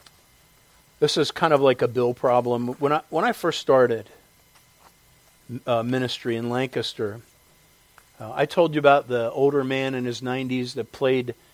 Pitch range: 120-145 Hz